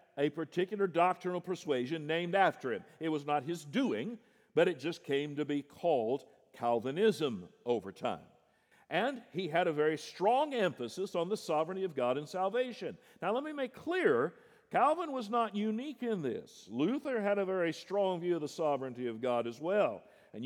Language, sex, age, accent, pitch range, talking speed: English, male, 50-69, American, 155-215 Hz, 180 wpm